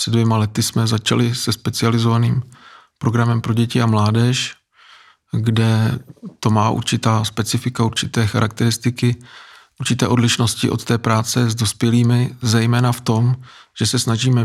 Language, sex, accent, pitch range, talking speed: Czech, male, native, 110-115 Hz, 135 wpm